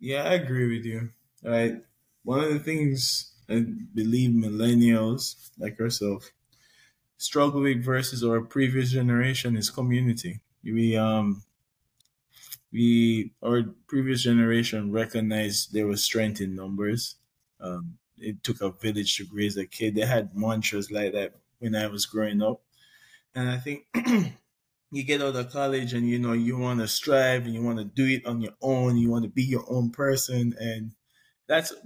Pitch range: 110-130 Hz